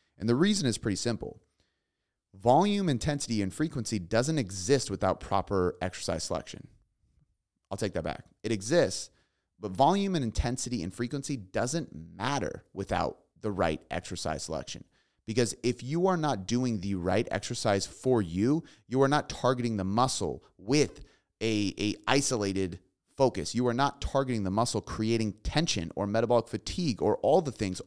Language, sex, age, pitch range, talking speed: English, male, 30-49, 100-130 Hz, 155 wpm